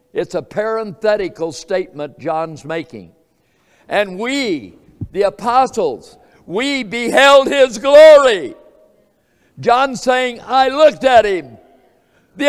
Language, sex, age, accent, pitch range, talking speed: English, male, 60-79, American, 165-225 Hz, 100 wpm